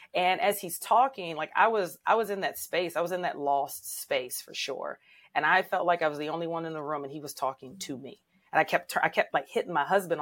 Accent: American